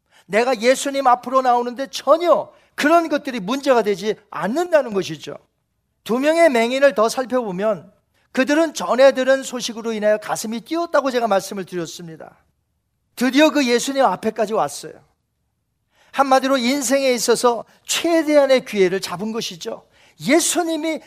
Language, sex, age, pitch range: Korean, male, 40-59, 210-290 Hz